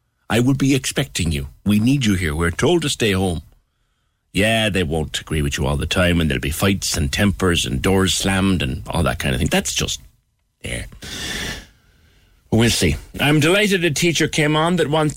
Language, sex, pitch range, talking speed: English, male, 85-125 Hz, 200 wpm